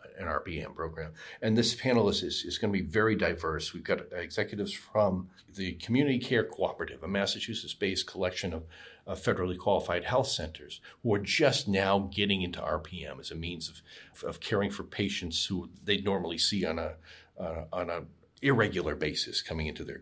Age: 40-59